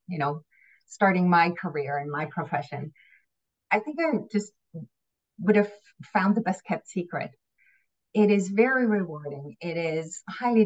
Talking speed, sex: 145 wpm, female